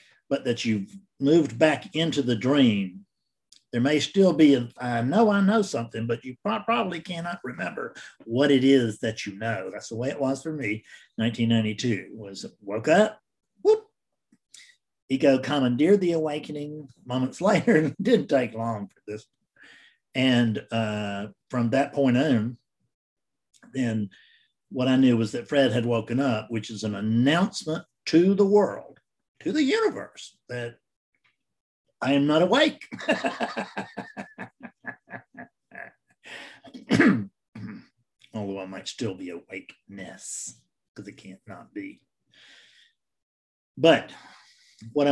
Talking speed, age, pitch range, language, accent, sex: 130 wpm, 50-69, 110-160 Hz, English, American, male